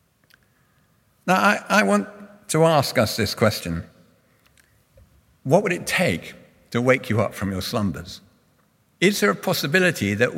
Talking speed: 145 wpm